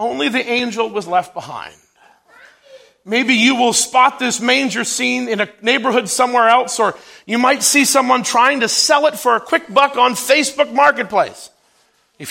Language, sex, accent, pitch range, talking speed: English, male, American, 215-285 Hz, 170 wpm